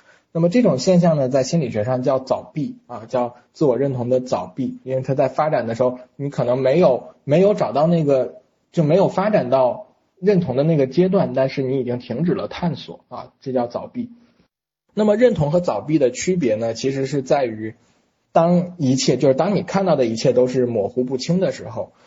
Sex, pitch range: male, 120-160 Hz